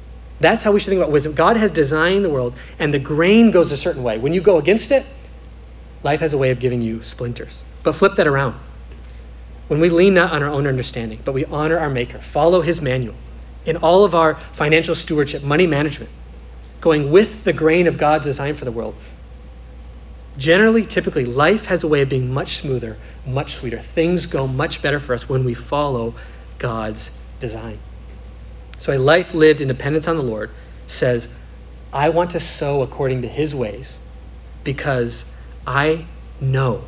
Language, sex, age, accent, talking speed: English, male, 40-59, American, 185 wpm